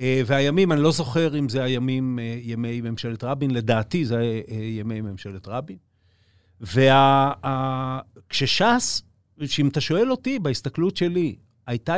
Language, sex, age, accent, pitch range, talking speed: Hebrew, male, 40-59, native, 110-145 Hz, 140 wpm